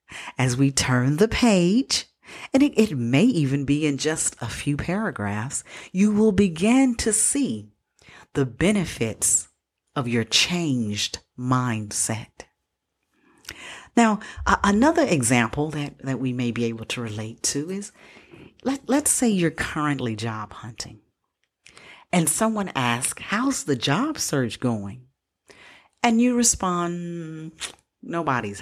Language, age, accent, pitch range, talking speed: English, 40-59, American, 120-195 Hz, 120 wpm